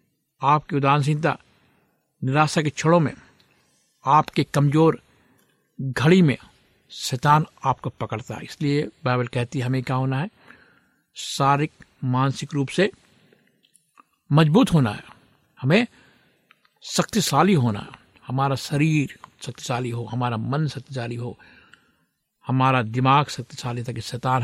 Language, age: Hindi, 60-79